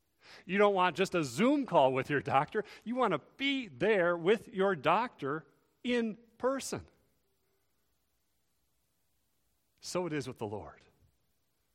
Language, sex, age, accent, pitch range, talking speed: English, male, 40-59, American, 115-180 Hz, 135 wpm